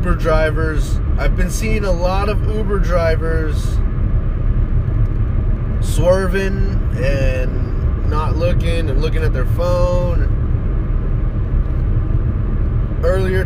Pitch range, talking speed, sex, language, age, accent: 95-110 Hz, 90 wpm, male, English, 20-39, American